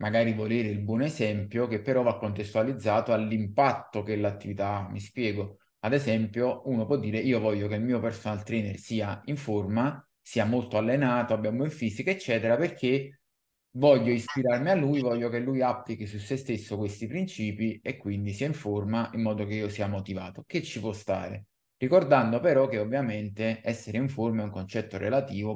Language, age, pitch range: Italian, 20-39, 105-125 Hz